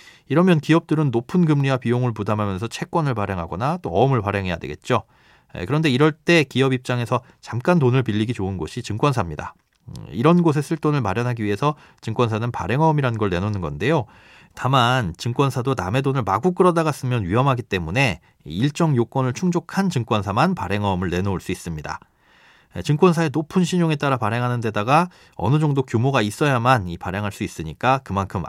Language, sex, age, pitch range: Korean, male, 40-59, 105-150 Hz